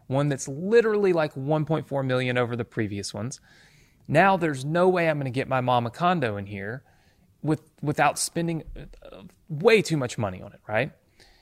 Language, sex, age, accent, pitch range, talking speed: English, male, 30-49, American, 110-140 Hz, 180 wpm